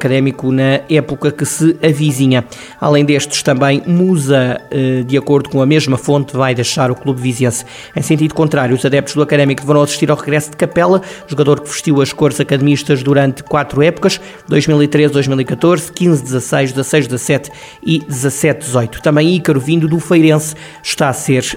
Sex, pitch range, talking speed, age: male, 140-155 Hz, 155 wpm, 20-39